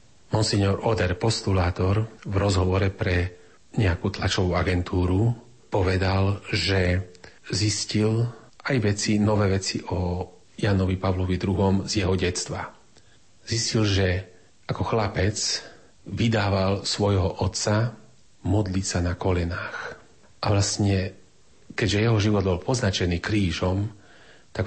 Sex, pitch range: male, 90-110 Hz